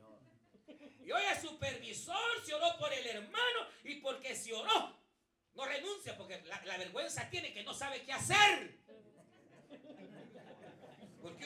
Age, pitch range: 50-69, 210-345 Hz